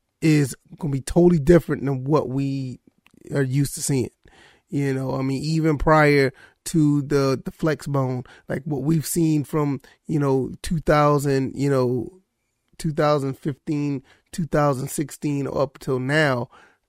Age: 30-49